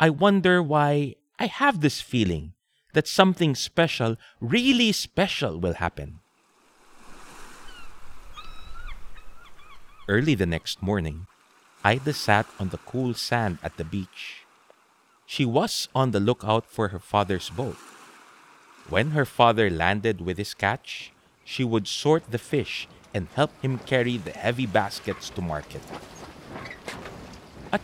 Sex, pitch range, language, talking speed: male, 100-145 Hz, English, 125 wpm